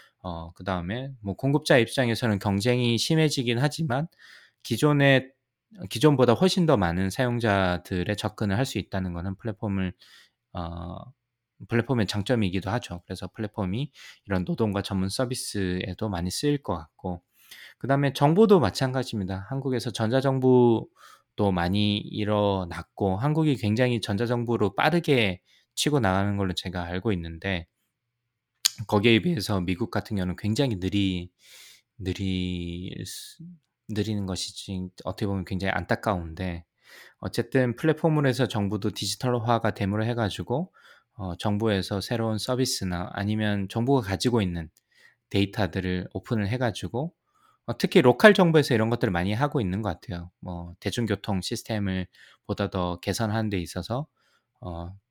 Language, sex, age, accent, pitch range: Korean, male, 20-39, native, 95-125 Hz